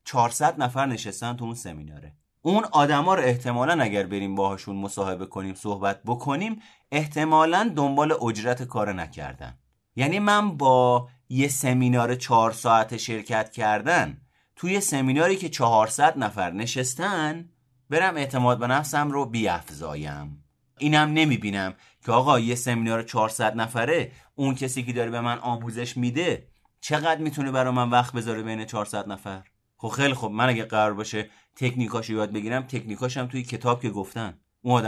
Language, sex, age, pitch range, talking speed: Persian, male, 30-49, 105-135 Hz, 150 wpm